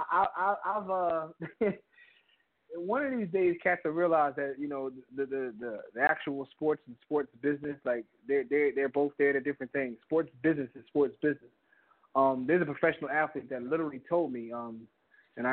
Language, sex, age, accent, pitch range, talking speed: English, male, 20-39, American, 130-170 Hz, 185 wpm